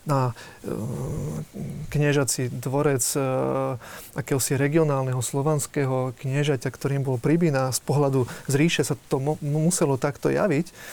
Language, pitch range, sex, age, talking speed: Slovak, 130-150 Hz, male, 30-49, 110 wpm